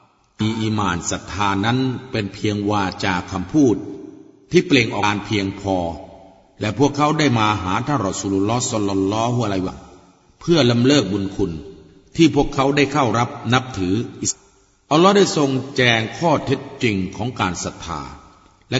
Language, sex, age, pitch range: Thai, male, 60-79, 100-135 Hz